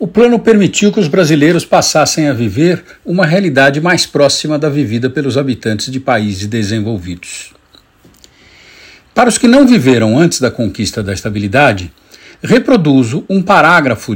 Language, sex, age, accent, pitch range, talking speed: Portuguese, male, 60-79, Brazilian, 120-185 Hz, 140 wpm